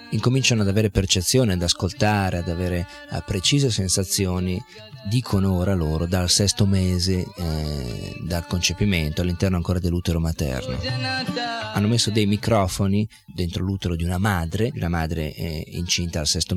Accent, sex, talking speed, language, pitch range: native, male, 140 wpm, Italian, 90-120 Hz